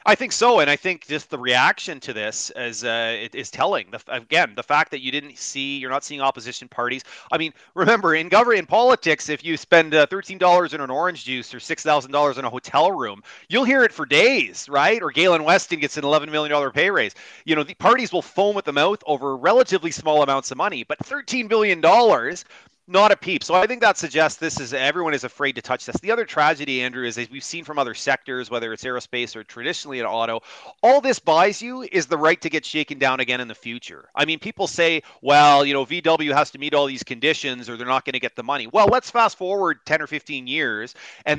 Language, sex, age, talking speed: English, male, 30-49, 235 wpm